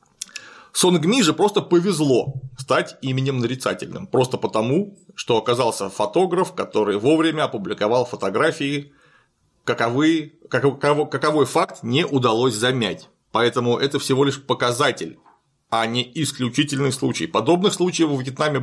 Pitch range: 125-155 Hz